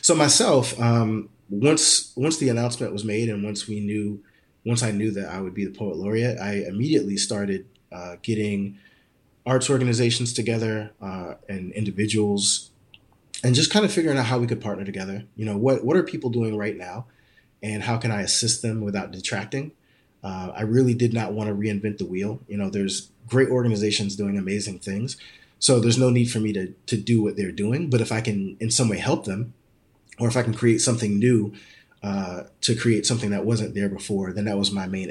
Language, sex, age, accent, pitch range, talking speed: English, male, 30-49, American, 100-120 Hz, 205 wpm